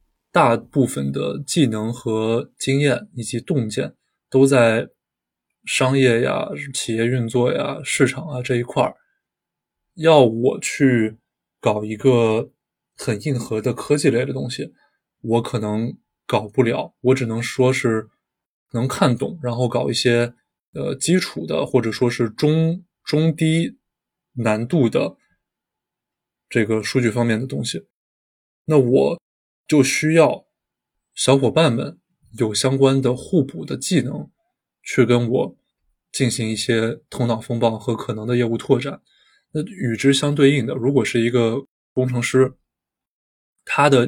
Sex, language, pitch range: male, Chinese, 115-135 Hz